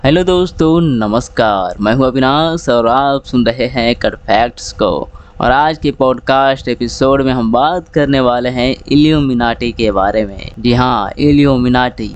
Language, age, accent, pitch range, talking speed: Hindi, 20-39, native, 125-150 Hz, 155 wpm